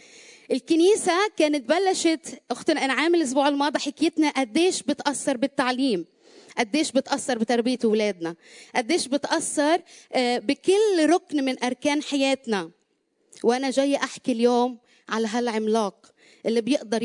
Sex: female